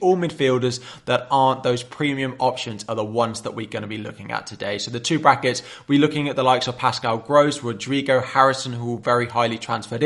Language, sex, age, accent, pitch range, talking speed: English, male, 20-39, British, 115-135 Hz, 220 wpm